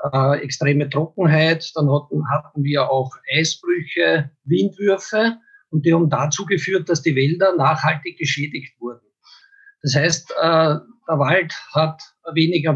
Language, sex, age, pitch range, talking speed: German, male, 50-69, 150-180 Hz, 120 wpm